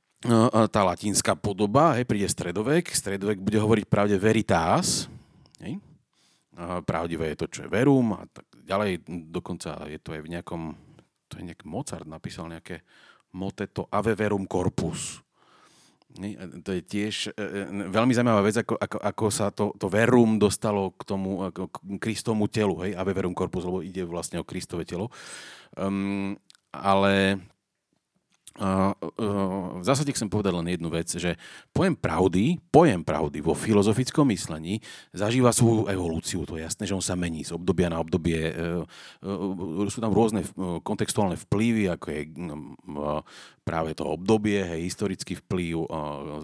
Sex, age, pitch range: male, 40-59, 90-105 Hz